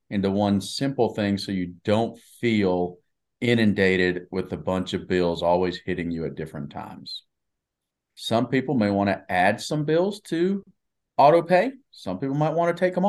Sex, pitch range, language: male, 100-140 Hz, English